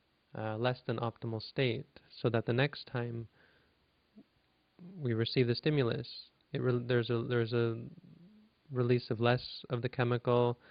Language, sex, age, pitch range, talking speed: English, male, 20-39, 115-135 Hz, 145 wpm